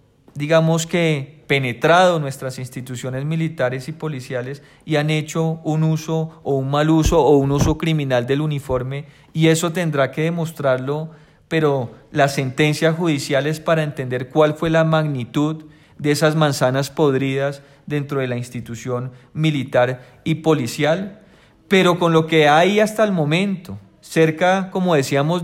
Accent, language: Colombian, Spanish